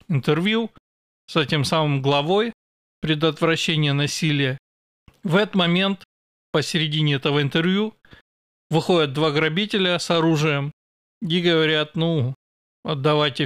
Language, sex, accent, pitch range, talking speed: Russian, male, native, 145-180 Hz, 100 wpm